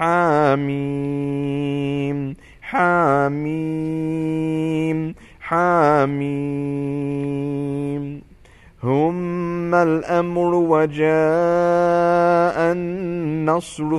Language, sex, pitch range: English, male, 140-170 Hz